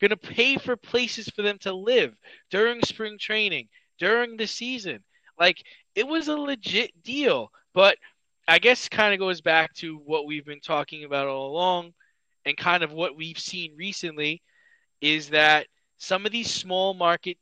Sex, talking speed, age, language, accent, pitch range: male, 170 wpm, 20-39, English, American, 155-215 Hz